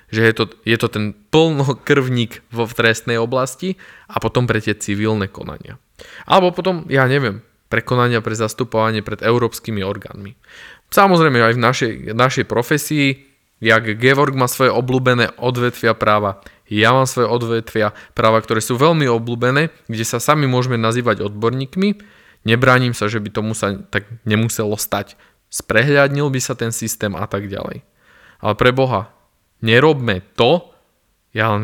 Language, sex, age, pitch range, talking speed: Slovak, male, 20-39, 105-125 Hz, 150 wpm